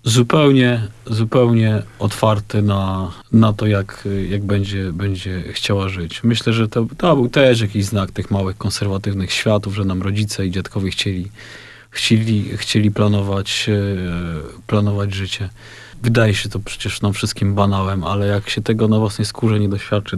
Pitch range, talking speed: 100-115 Hz, 150 wpm